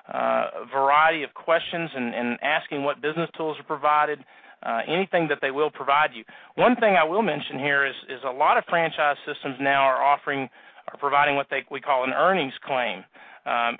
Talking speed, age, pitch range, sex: 200 wpm, 40-59, 135-165 Hz, male